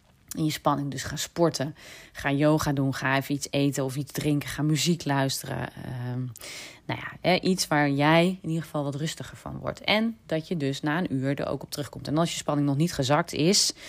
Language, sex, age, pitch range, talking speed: Dutch, female, 30-49, 130-155 Hz, 215 wpm